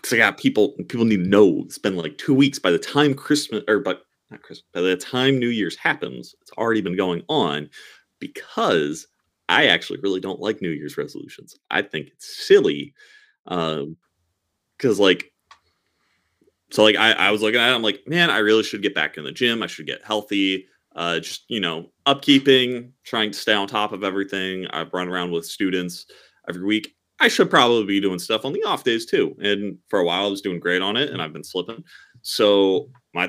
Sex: male